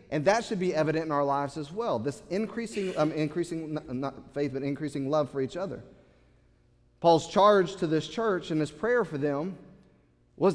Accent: American